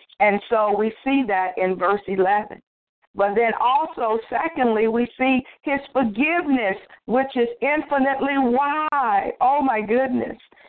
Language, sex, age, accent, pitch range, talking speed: English, female, 50-69, American, 205-270 Hz, 130 wpm